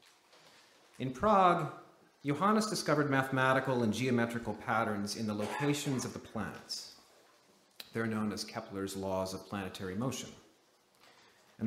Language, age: English, 40-59